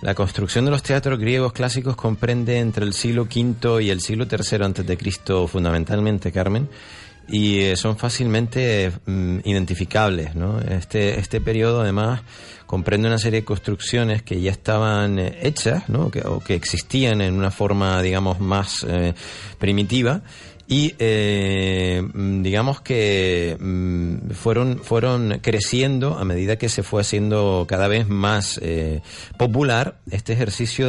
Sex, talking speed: male, 140 wpm